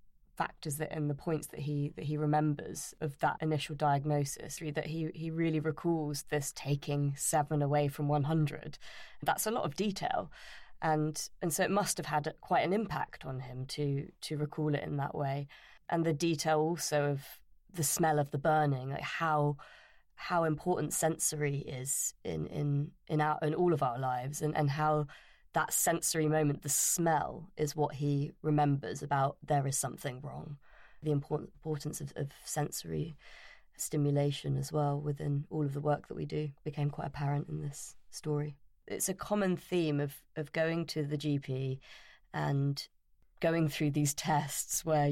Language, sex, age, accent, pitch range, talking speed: English, female, 20-39, British, 145-155 Hz, 175 wpm